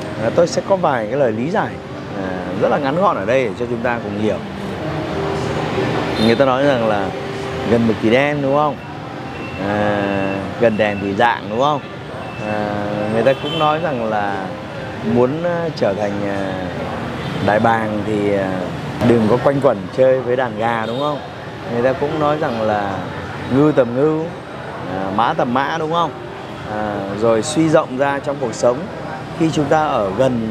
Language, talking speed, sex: Vietnamese, 175 wpm, male